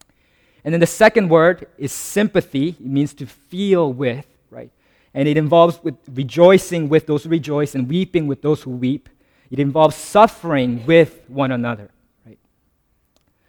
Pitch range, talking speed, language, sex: 120-150 Hz, 150 wpm, English, male